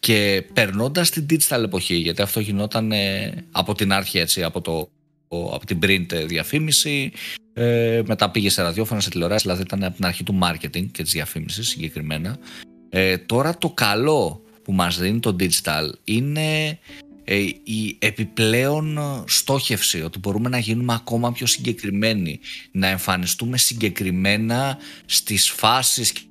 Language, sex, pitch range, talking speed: Greek, male, 95-120 Hz, 140 wpm